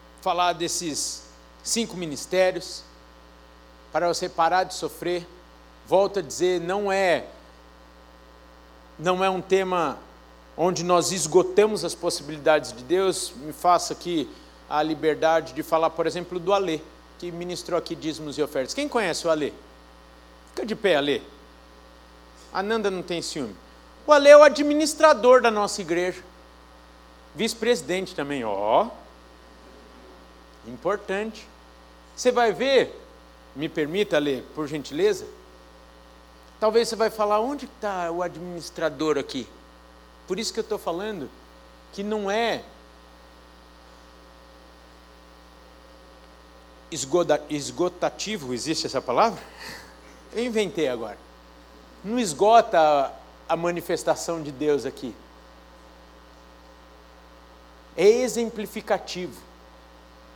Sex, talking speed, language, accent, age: male, 110 wpm, Portuguese, Brazilian, 50-69